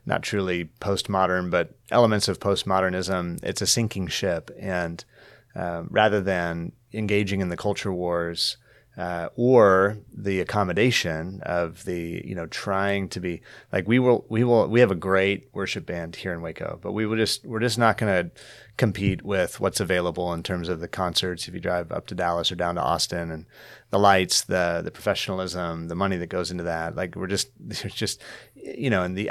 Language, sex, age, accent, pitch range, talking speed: English, male, 30-49, American, 90-105 Hz, 190 wpm